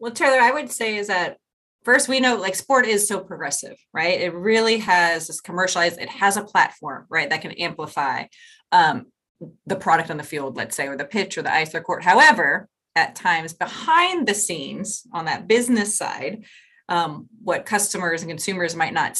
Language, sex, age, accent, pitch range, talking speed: English, female, 30-49, American, 165-210 Hz, 195 wpm